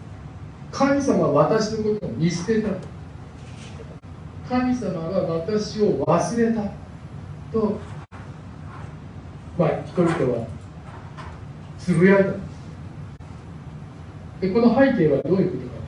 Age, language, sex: 40-59, Japanese, male